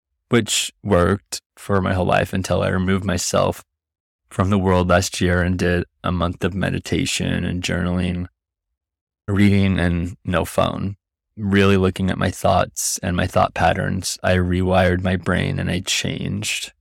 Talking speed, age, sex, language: 155 wpm, 20-39, male, English